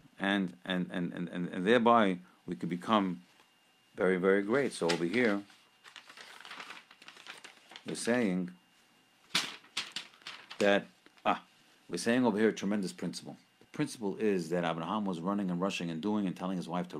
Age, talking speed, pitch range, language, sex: 50-69, 150 wpm, 95-140 Hz, English, male